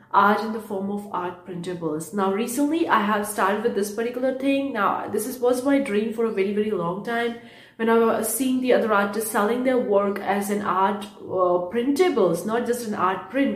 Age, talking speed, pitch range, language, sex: 30-49, 215 wpm, 195-240 Hz, English, female